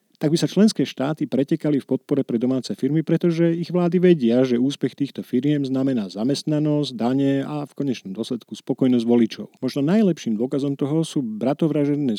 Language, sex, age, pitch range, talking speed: Slovak, male, 40-59, 110-140 Hz, 165 wpm